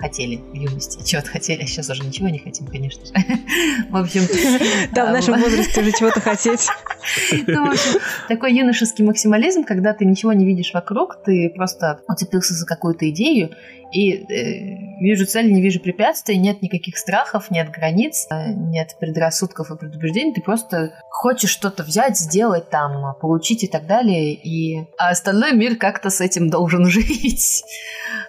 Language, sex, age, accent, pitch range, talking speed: Russian, female, 20-39, native, 150-200 Hz, 150 wpm